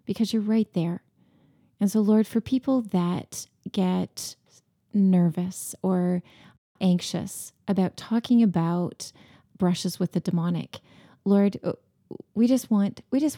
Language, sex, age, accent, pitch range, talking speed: English, female, 30-49, American, 180-215 Hz, 120 wpm